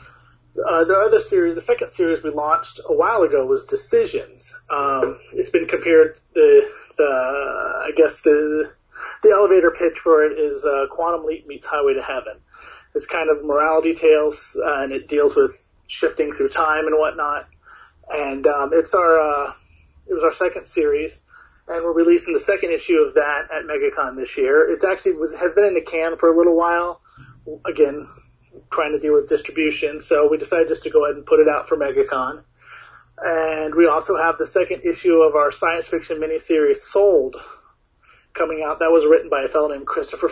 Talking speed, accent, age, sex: 190 wpm, American, 30-49, male